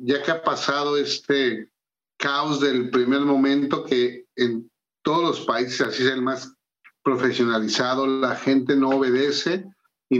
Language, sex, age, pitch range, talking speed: English, male, 50-69, 125-145 Hz, 140 wpm